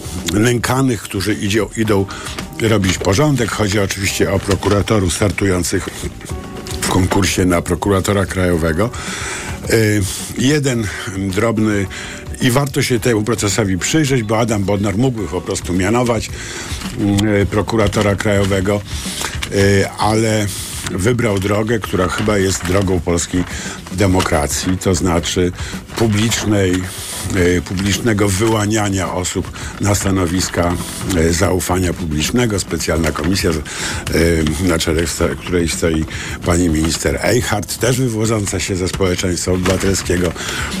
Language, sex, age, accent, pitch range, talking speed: Polish, male, 50-69, native, 90-110 Hz, 100 wpm